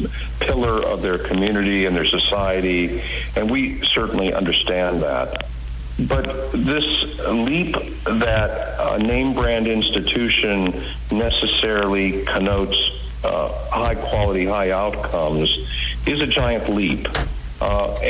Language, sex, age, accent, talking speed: English, male, 50-69, American, 100 wpm